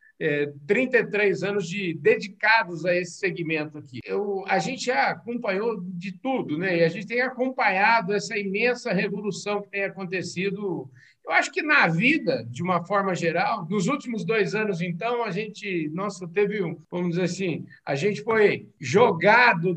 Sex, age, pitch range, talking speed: male, 50-69, 180-255 Hz, 165 wpm